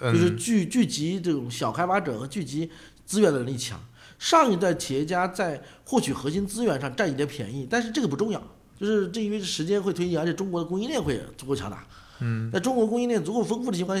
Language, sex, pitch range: Chinese, male, 140-210 Hz